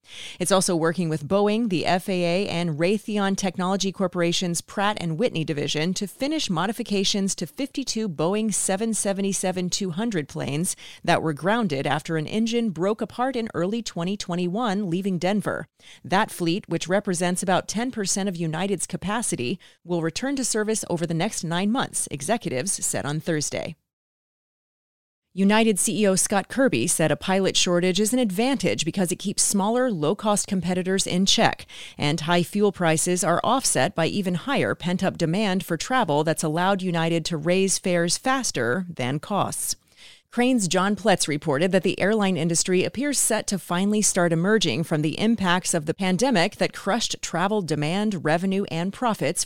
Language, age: English, 30-49